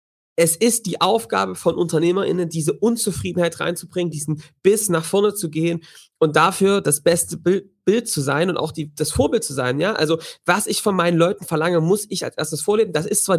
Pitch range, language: 155-190 Hz, German